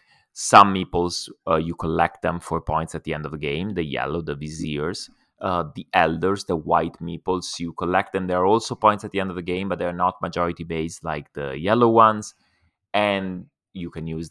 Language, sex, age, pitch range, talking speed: English, male, 30-49, 80-100 Hz, 205 wpm